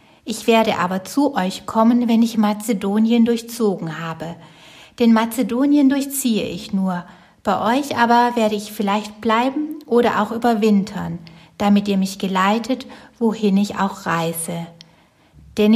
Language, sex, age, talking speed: German, female, 60-79, 135 wpm